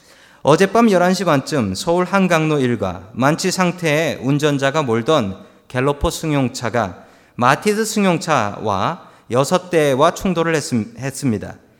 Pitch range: 130-190 Hz